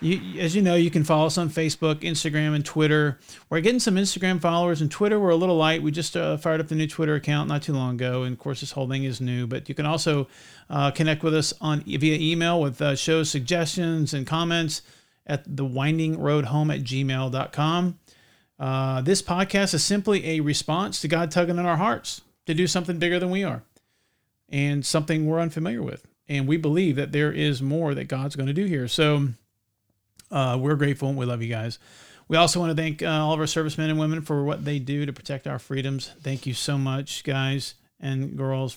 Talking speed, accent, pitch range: 215 wpm, American, 135-160 Hz